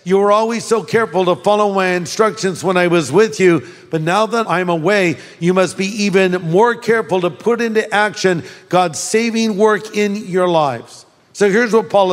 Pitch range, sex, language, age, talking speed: 175-225 Hz, male, English, 50-69, 195 wpm